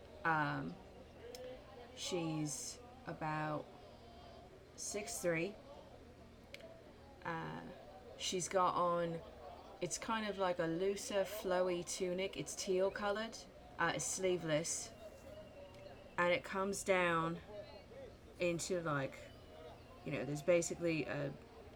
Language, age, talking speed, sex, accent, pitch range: English, 20-39, 85 wpm, female, British, 155-180 Hz